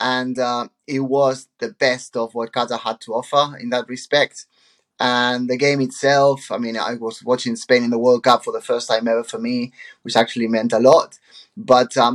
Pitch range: 115-135 Hz